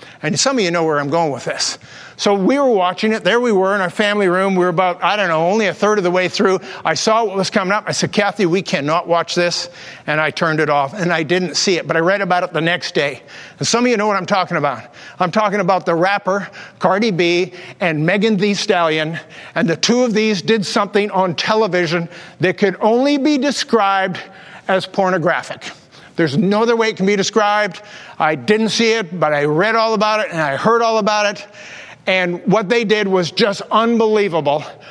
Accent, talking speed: American, 230 wpm